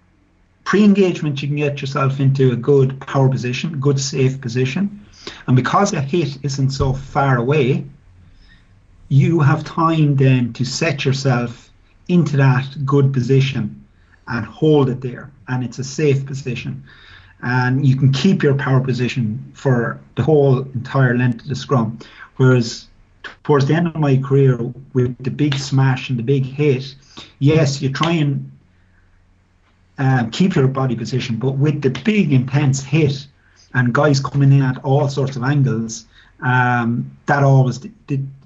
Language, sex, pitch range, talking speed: English, male, 120-140 Hz, 155 wpm